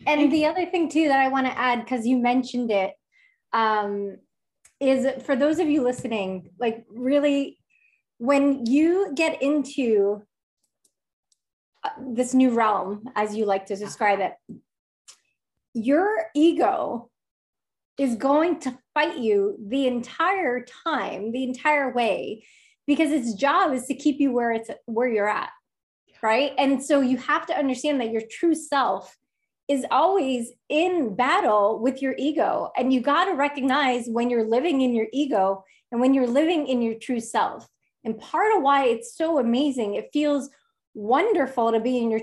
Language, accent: English, American